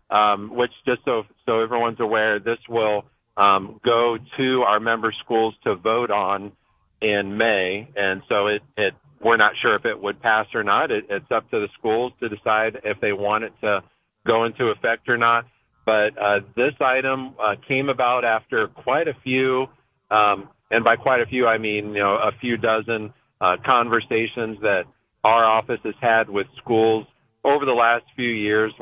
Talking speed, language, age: 185 wpm, English, 40-59